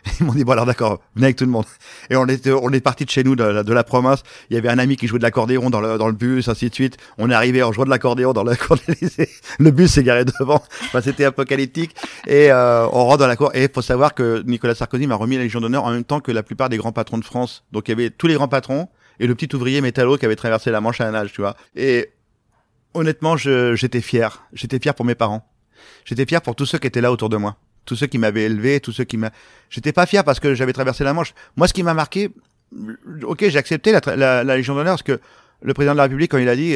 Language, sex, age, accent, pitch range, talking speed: French, male, 30-49, French, 115-140 Hz, 285 wpm